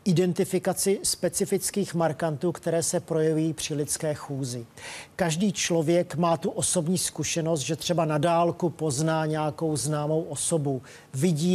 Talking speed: 125 wpm